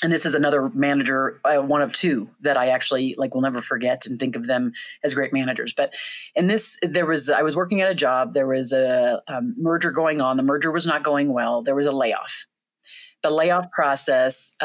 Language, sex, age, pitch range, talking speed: English, female, 30-49, 135-155 Hz, 220 wpm